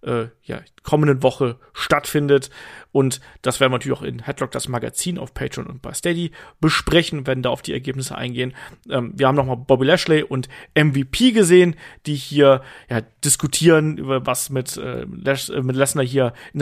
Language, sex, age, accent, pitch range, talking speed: German, male, 40-59, German, 130-175 Hz, 180 wpm